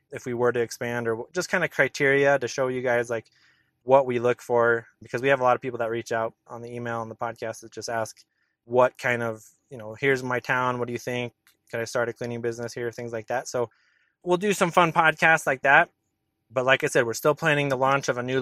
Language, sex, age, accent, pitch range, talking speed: English, male, 20-39, American, 120-150 Hz, 260 wpm